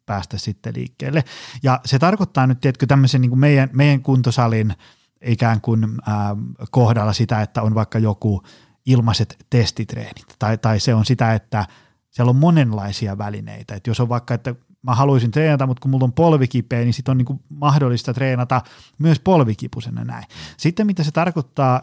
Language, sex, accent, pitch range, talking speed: Finnish, male, native, 115-140 Hz, 170 wpm